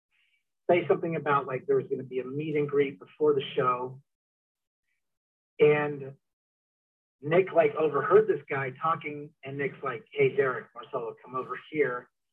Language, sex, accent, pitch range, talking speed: English, male, American, 135-170 Hz, 150 wpm